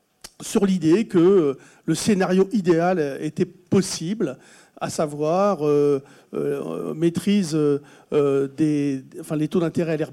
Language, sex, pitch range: French, male, 155-205 Hz